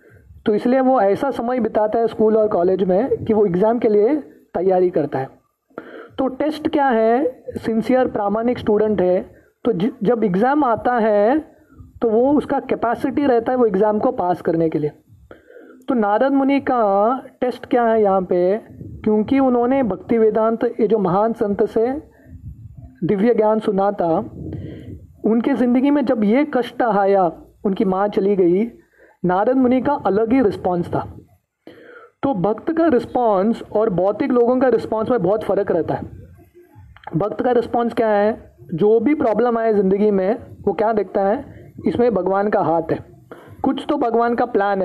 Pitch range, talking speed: 195-250 Hz, 140 wpm